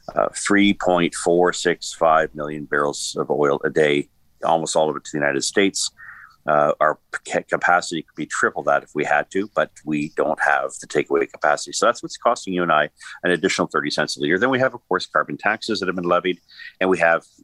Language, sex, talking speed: English, male, 210 wpm